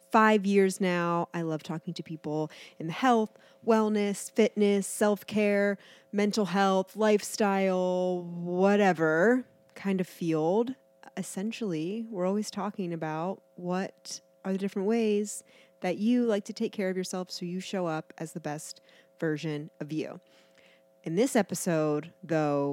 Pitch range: 160-195 Hz